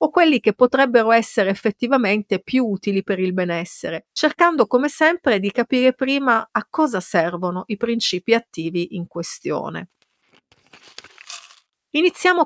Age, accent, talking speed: 50-69, native, 125 wpm